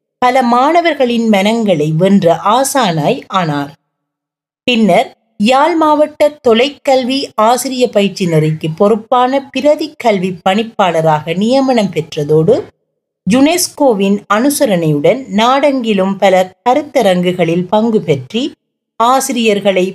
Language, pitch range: Tamil, 175-260 Hz